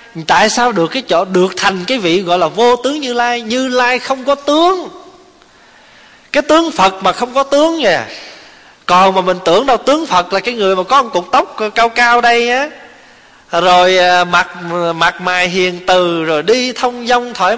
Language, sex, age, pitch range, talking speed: Vietnamese, male, 20-39, 170-240 Hz, 200 wpm